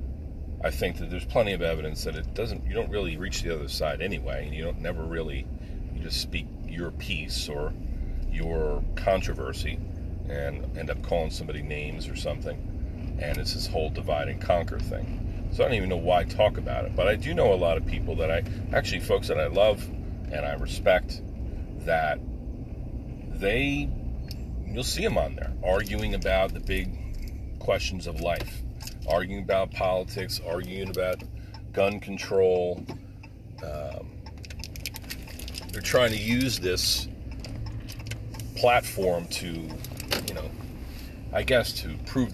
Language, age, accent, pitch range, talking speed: English, 40-59, American, 80-100 Hz, 155 wpm